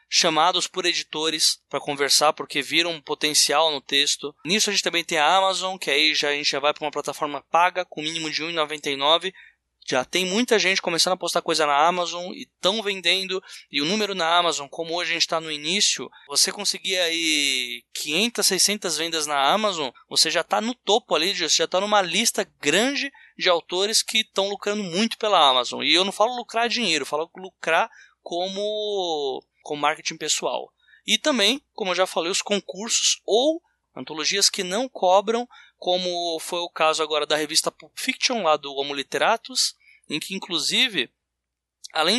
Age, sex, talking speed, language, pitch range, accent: 20-39, male, 180 wpm, Portuguese, 155-220 Hz, Brazilian